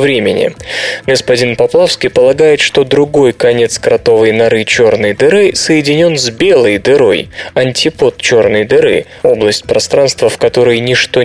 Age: 20-39